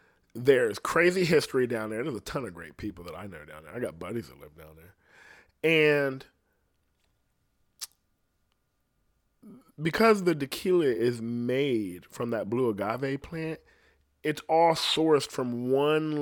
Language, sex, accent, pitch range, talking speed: English, male, American, 105-145 Hz, 145 wpm